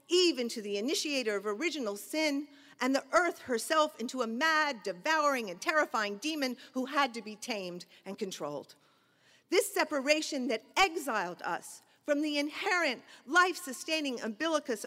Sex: female